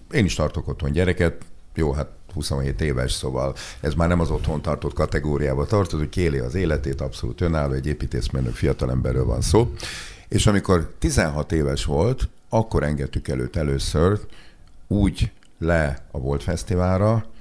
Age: 50-69